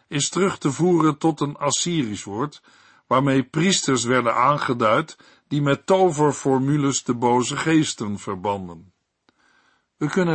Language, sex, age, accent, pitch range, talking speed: Dutch, male, 50-69, Dutch, 115-155 Hz, 120 wpm